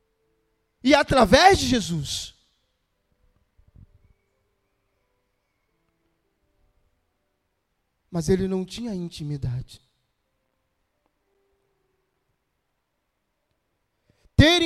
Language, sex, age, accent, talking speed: Portuguese, male, 40-59, Brazilian, 40 wpm